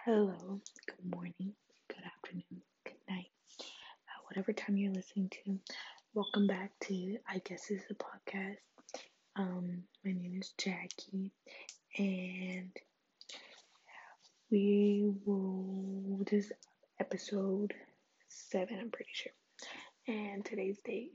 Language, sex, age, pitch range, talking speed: English, female, 20-39, 190-210 Hz, 115 wpm